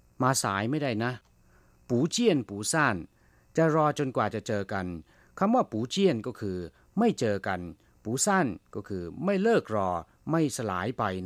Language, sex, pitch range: Thai, male, 95-140 Hz